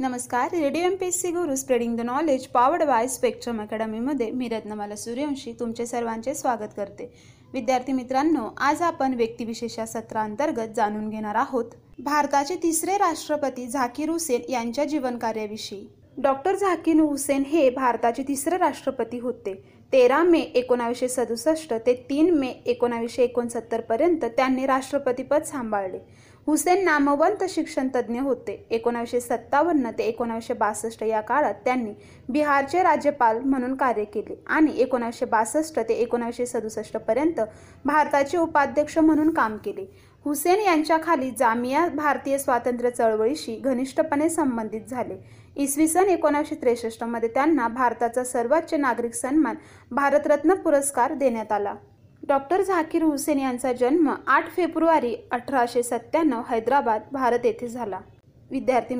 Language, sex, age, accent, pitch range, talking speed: Marathi, female, 30-49, native, 235-300 Hz, 105 wpm